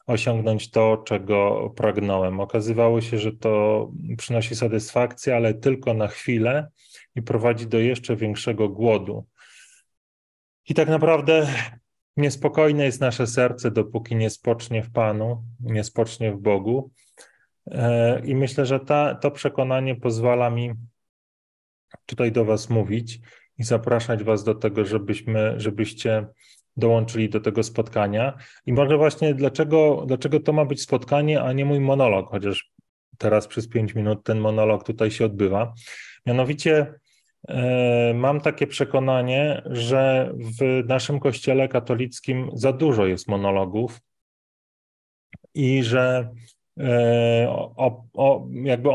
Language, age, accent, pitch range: Polish, 20-39, native, 110-130 Hz